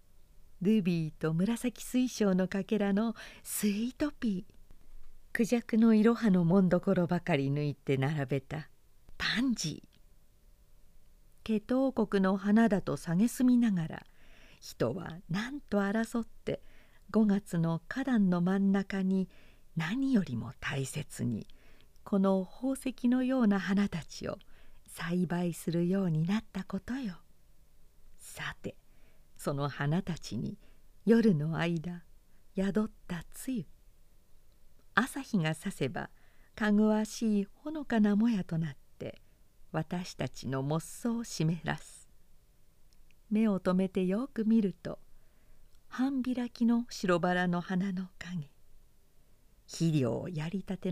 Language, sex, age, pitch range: Japanese, female, 50-69, 165-230 Hz